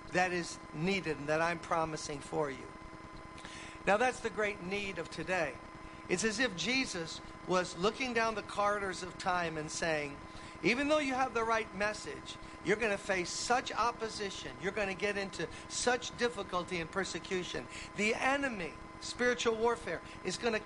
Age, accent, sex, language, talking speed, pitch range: 50-69, American, male, English, 160 wpm, 170-215 Hz